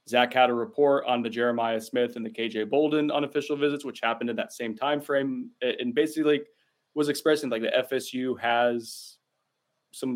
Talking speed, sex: 185 wpm, male